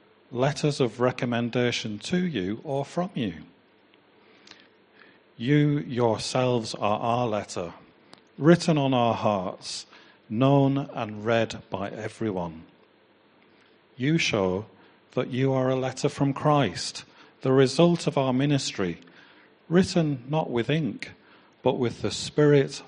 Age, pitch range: 40-59, 105-140 Hz